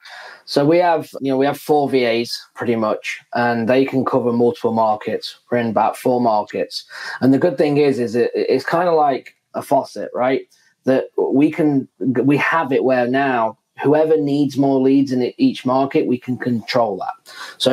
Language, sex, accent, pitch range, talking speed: English, male, British, 125-140 Hz, 185 wpm